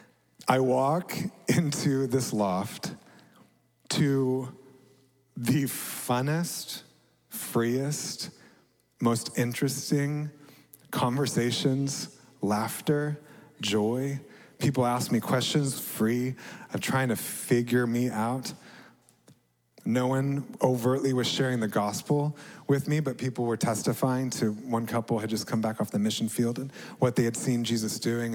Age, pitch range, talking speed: 30-49, 115-140 Hz, 120 wpm